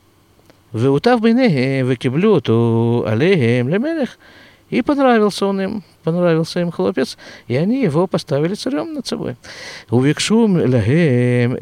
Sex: male